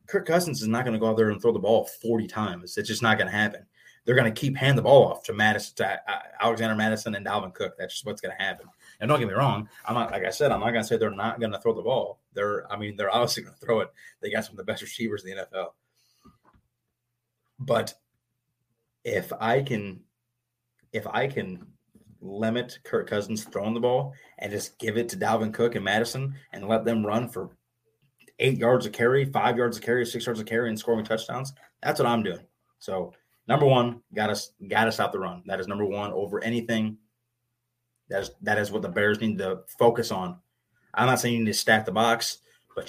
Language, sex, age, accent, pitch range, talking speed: English, male, 30-49, American, 110-120 Hz, 230 wpm